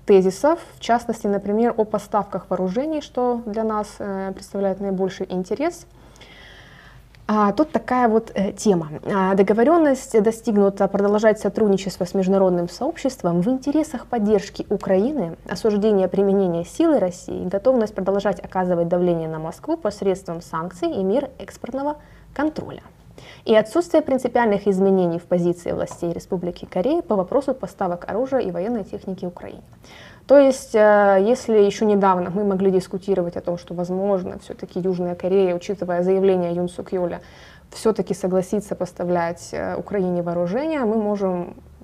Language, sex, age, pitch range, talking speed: Russian, female, 20-39, 185-225 Hz, 125 wpm